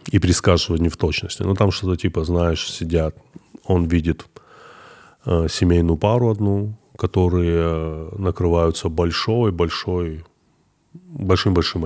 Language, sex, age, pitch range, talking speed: Russian, male, 20-39, 80-95 Hz, 110 wpm